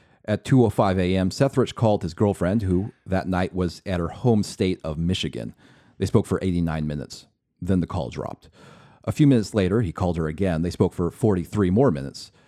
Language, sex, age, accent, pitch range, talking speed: English, male, 40-59, American, 85-105 Hz, 195 wpm